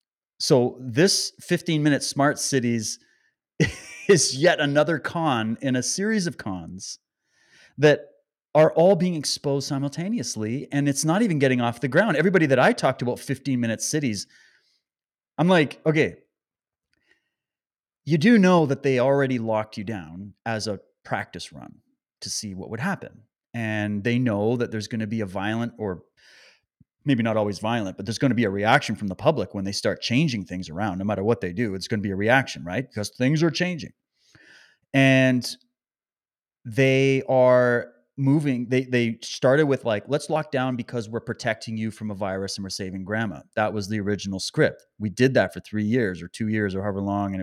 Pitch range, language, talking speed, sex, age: 105-140 Hz, English, 180 wpm, male, 30-49